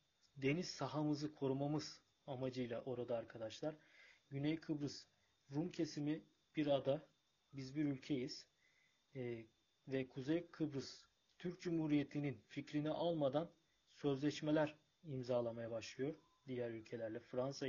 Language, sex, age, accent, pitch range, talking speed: Turkish, male, 40-59, native, 130-165 Hz, 100 wpm